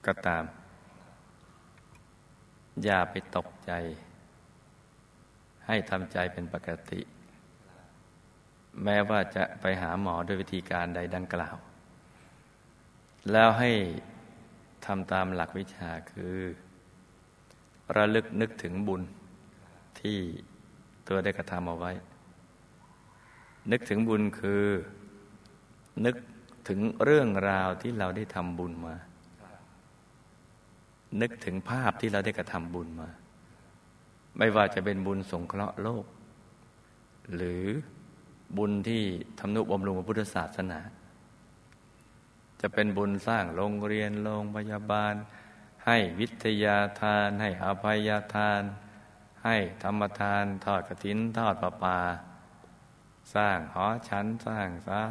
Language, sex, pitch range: Thai, male, 90-105 Hz